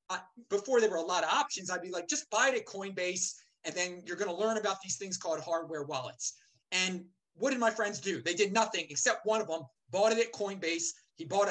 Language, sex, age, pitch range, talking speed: English, male, 30-49, 175-235 Hz, 240 wpm